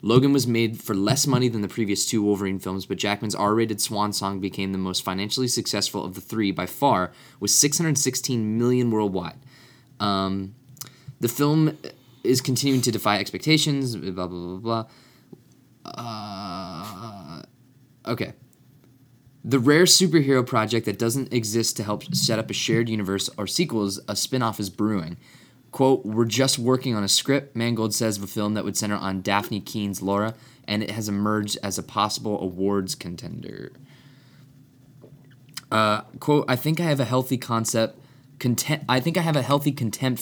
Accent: American